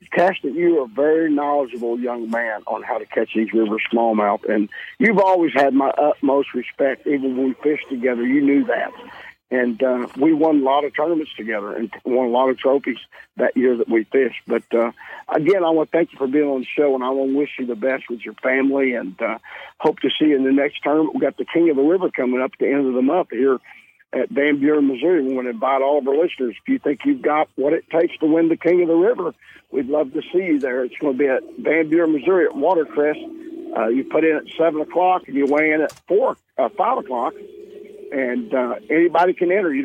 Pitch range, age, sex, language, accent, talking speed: 130-165 Hz, 50-69, male, English, American, 250 wpm